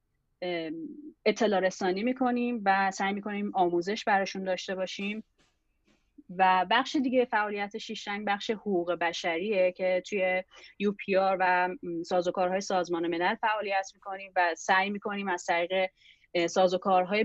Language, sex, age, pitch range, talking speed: Persian, female, 30-49, 175-205 Hz, 120 wpm